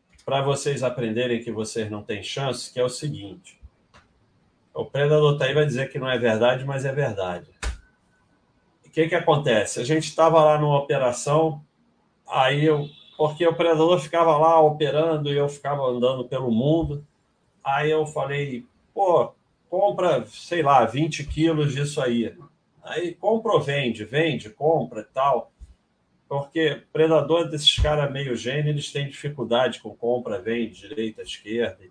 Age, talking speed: 40-59, 155 wpm